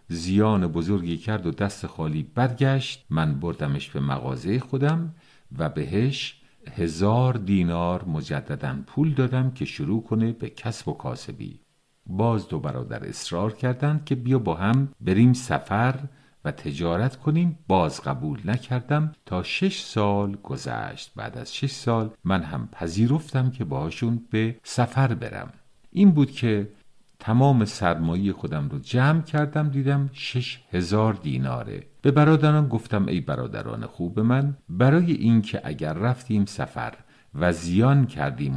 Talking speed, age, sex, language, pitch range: 135 wpm, 50-69, male, Persian, 95-135 Hz